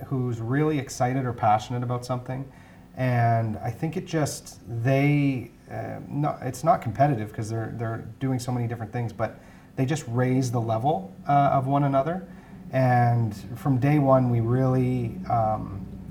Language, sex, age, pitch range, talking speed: English, male, 30-49, 110-130 Hz, 155 wpm